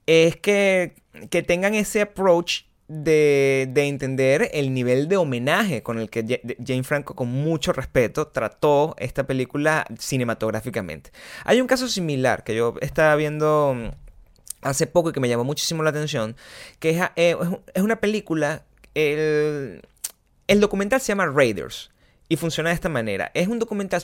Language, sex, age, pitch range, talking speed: Spanish, male, 20-39, 130-175 Hz, 150 wpm